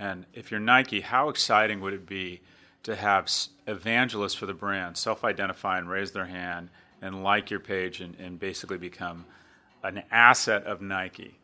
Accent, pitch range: American, 95-120 Hz